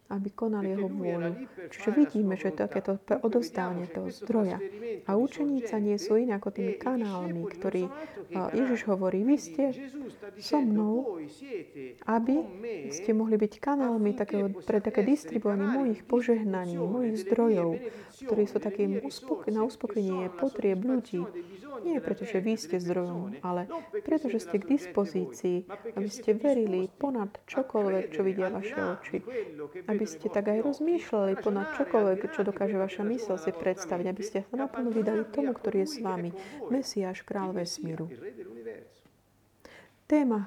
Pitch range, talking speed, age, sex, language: 195-240 Hz, 140 wpm, 30-49, female, Slovak